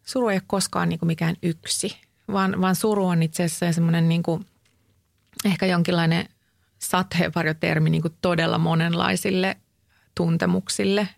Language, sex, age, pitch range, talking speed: Finnish, female, 30-49, 155-180 Hz, 125 wpm